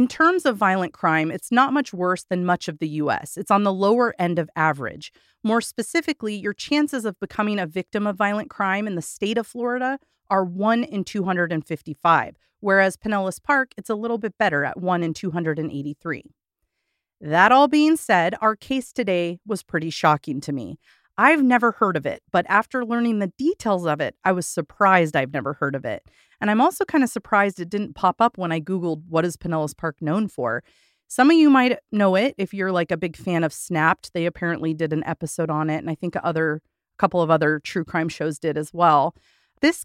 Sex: female